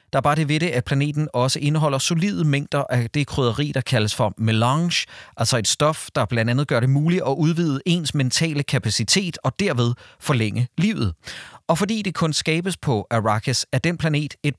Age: 40-59